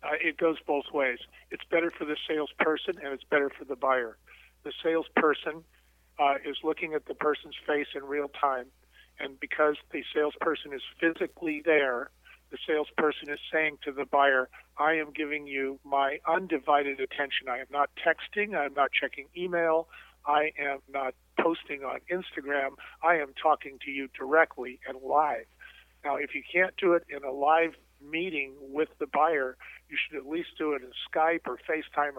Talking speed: 175 wpm